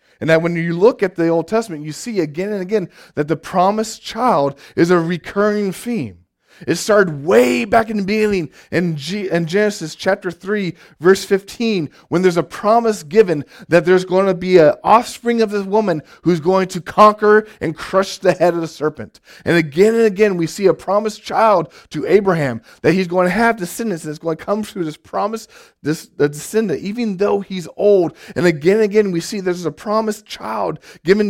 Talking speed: 200 wpm